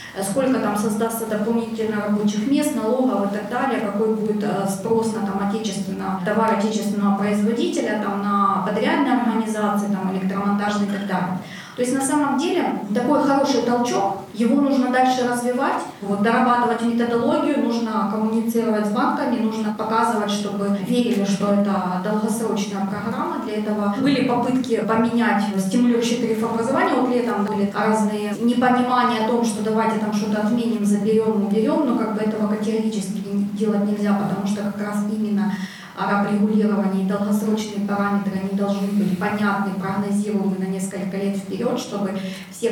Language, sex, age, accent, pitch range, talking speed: Ukrainian, female, 20-39, native, 200-230 Hz, 145 wpm